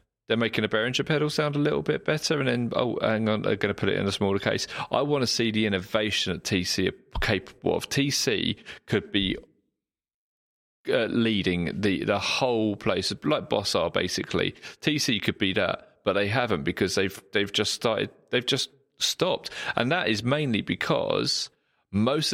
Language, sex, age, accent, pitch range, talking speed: English, male, 30-49, British, 105-130 Hz, 185 wpm